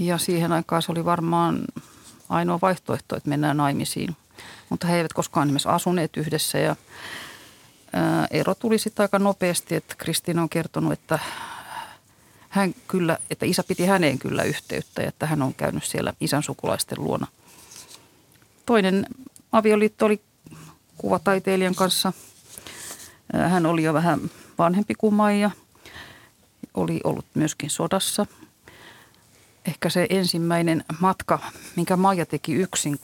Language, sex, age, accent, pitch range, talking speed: Finnish, female, 40-59, native, 150-185 Hz, 120 wpm